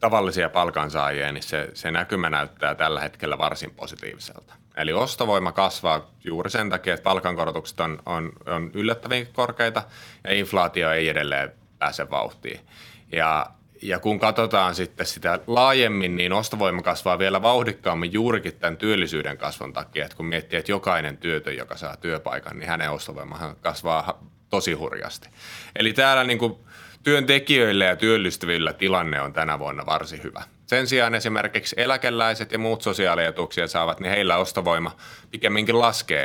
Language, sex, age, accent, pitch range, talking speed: Finnish, male, 30-49, native, 90-110 Hz, 145 wpm